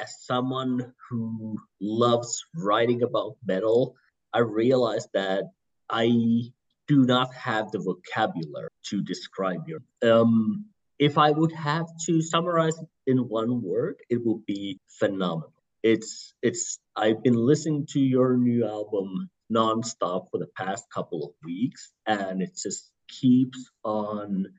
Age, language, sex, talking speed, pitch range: 30-49, English, male, 130 wpm, 110-140 Hz